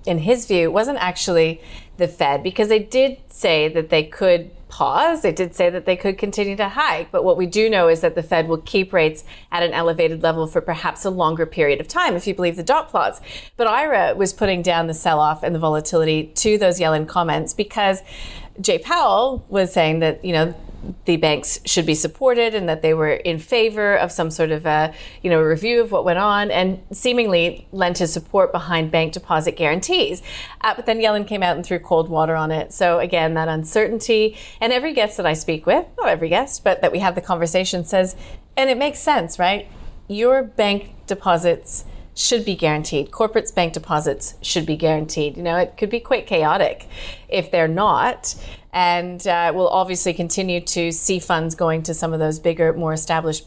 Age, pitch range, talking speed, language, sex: 30-49, 160-205 Hz, 205 wpm, English, female